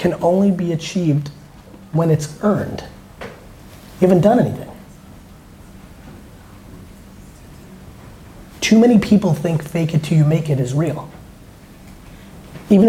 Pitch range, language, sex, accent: 135-170 Hz, English, male, American